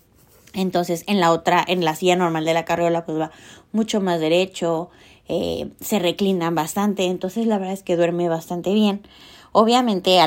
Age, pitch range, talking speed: 20-39, 160-195 Hz, 175 wpm